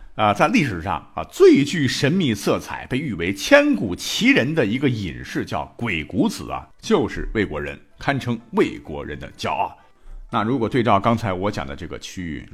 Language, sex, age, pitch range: Chinese, male, 50-69, 85-115 Hz